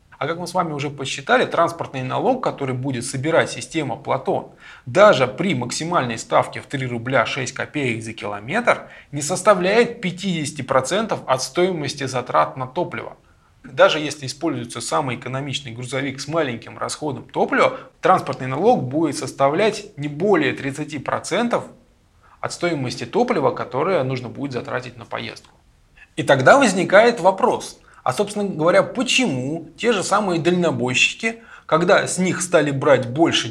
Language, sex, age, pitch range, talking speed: Russian, male, 20-39, 135-190 Hz, 140 wpm